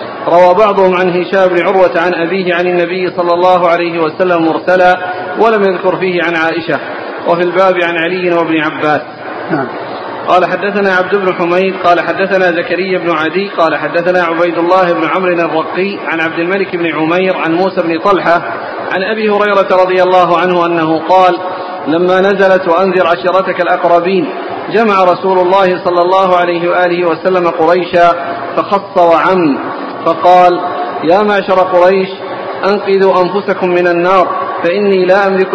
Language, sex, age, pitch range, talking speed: Arabic, male, 40-59, 175-190 Hz, 145 wpm